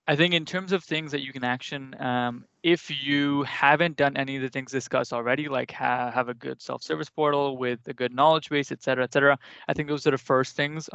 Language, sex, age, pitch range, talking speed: English, male, 20-39, 125-145 Hz, 245 wpm